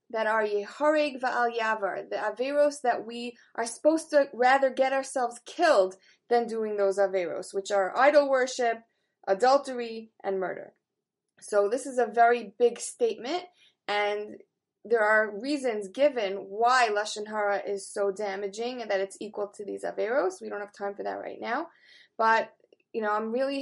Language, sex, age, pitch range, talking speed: English, female, 20-39, 210-265 Hz, 165 wpm